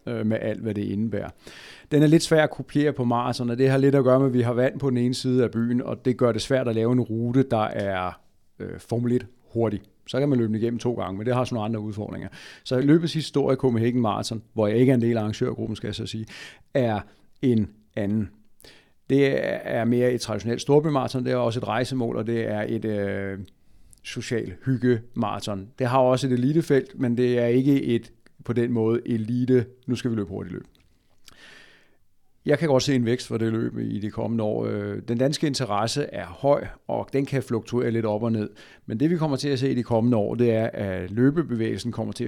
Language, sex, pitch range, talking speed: Danish, male, 110-130 Hz, 225 wpm